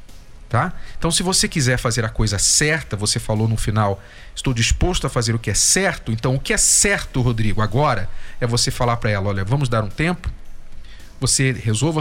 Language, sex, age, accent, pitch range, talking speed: Portuguese, male, 40-59, Brazilian, 110-145 Hz, 200 wpm